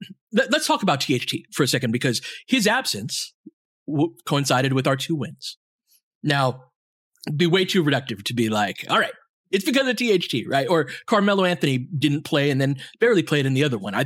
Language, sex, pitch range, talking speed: English, male, 130-175 Hz, 195 wpm